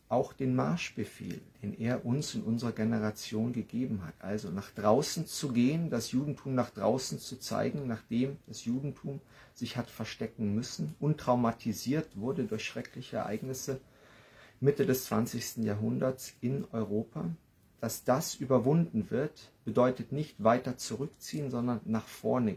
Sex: male